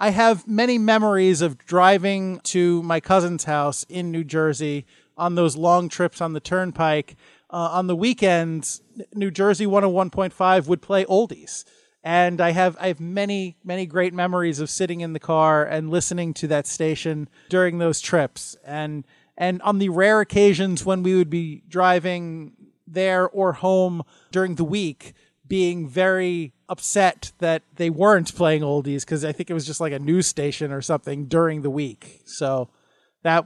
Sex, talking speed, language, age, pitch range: male, 170 wpm, English, 30-49, 155-195 Hz